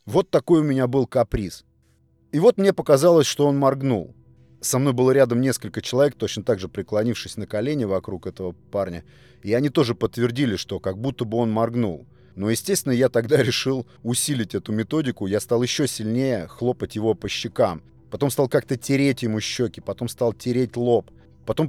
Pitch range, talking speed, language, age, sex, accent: 105-130 Hz, 180 wpm, Russian, 30-49, male, native